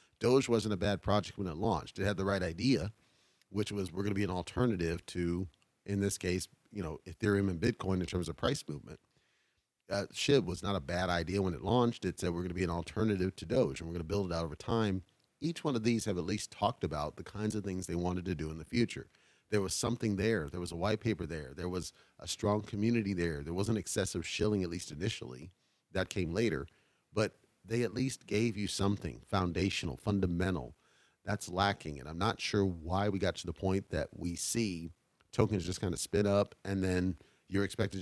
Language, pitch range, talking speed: English, 90-105 Hz, 230 wpm